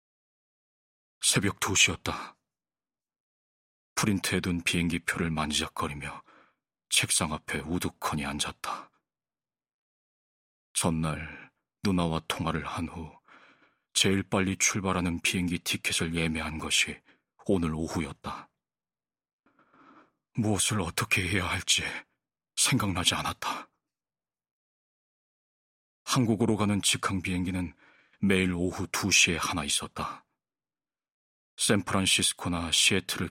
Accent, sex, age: native, male, 40-59